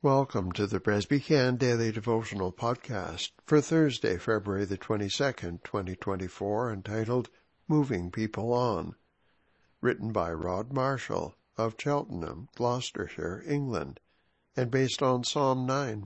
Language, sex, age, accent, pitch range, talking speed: English, male, 60-79, American, 95-130 Hz, 110 wpm